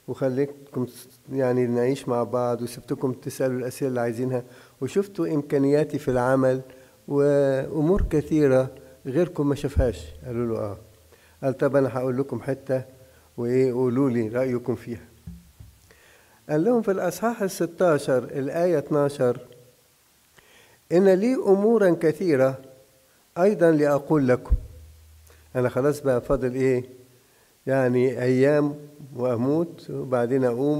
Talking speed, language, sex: 110 wpm, English, male